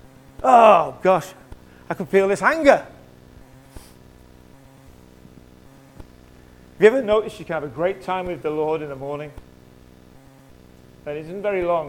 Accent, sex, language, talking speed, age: British, male, English, 140 wpm, 40-59